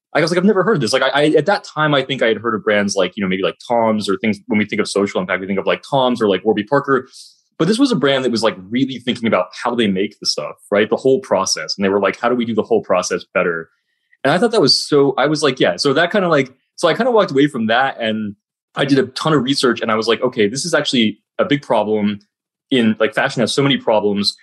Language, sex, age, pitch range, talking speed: English, male, 20-39, 105-140 Hz, 305 wpm